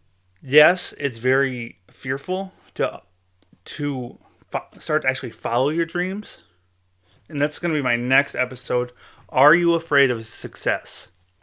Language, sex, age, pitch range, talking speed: English, male, 30-49, 90-145 Hz, 135 wpm